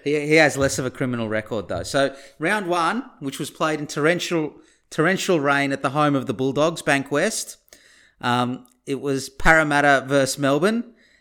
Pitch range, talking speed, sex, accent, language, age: 120-150 Hz, 175 wpm, male, Australian, English, 30-49